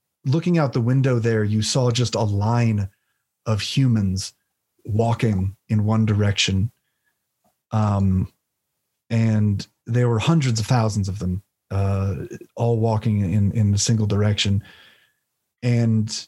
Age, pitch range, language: 30-49, 105-130 Hz, English